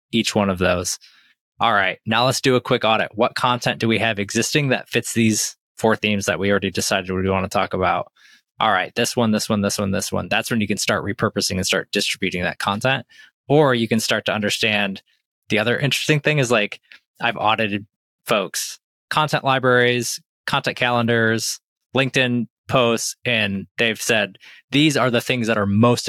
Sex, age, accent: male, 20-39, American